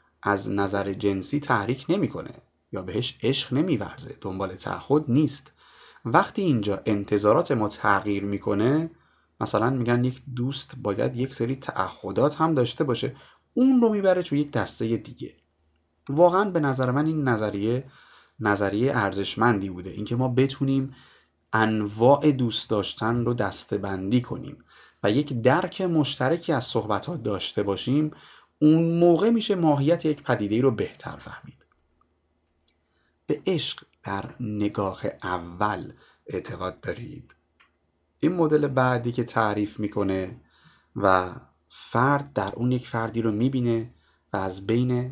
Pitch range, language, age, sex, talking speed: 100-135 Hz, Persian, 30-49, male, 130 wpm